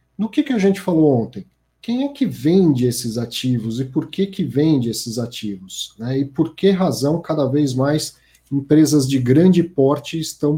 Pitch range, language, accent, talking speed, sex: 125-175 Hz, Portuguese, Brazilian, 185 wpm, male